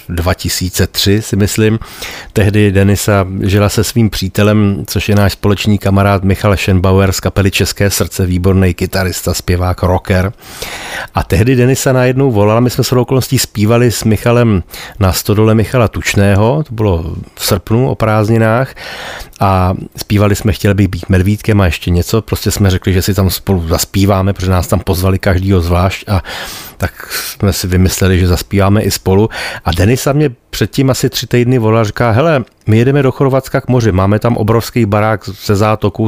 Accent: native